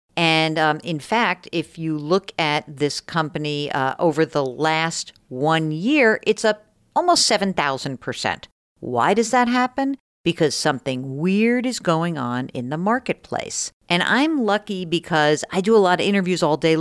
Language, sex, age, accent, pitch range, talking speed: English, female, 50-69, American, 145-195 Hz, 160 wpm